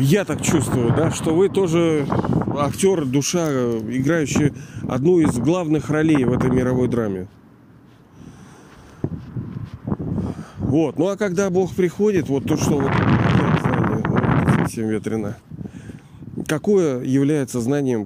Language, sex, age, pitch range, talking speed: Russian, male, 40-59, 125-165 Hz, 115 wpm